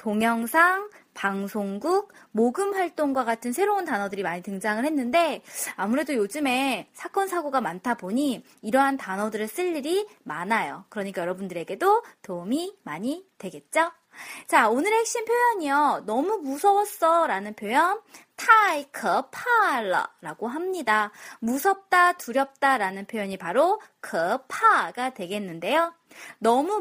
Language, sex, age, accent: Korean, female, 20-39, native